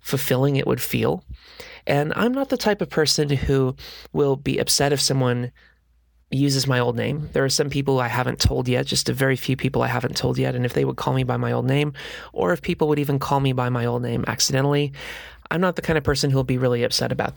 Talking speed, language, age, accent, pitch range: 250 wpm, English, 30-49, American, 125-145 Hz